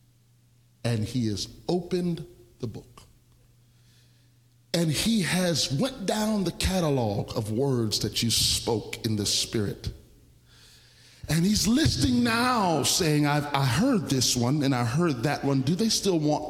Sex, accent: male, American